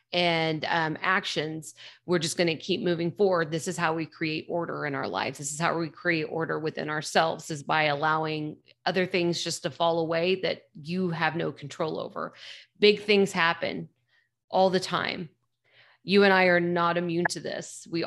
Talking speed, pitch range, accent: 190 wpm, 160-185 Hz, American